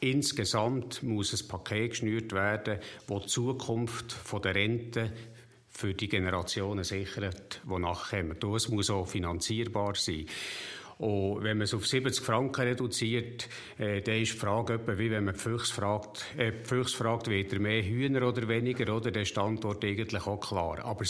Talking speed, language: 165 wpm, German